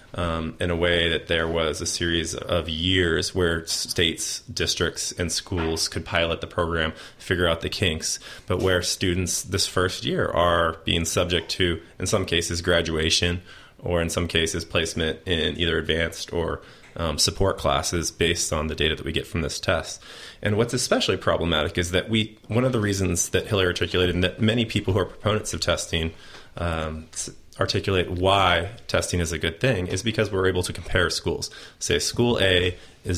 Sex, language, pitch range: male, English, 85-95 Hz